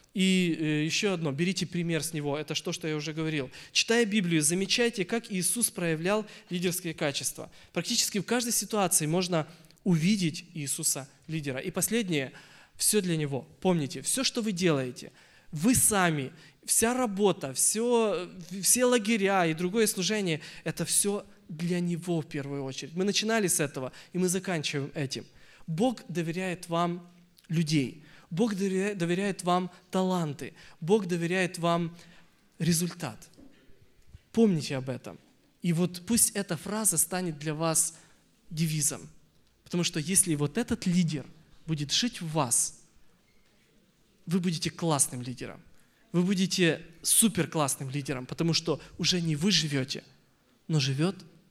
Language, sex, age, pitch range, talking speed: Russian, male, 20-39, 150-190 Hz, 135 wpm